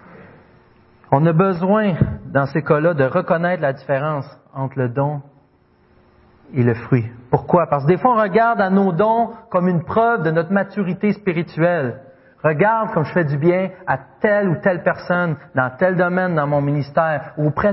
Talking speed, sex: 175 wpm, male